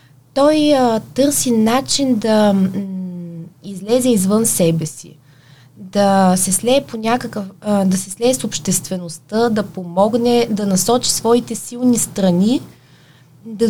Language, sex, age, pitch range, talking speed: Bulgarian, female, 20-39, 185-235 Hz, 125 wpm